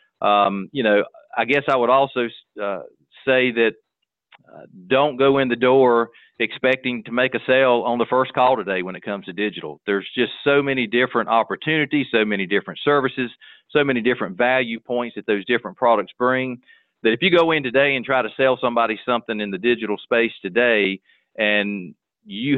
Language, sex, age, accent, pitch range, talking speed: English, male, 40-59, American, 110-130 Hz, 190 wpm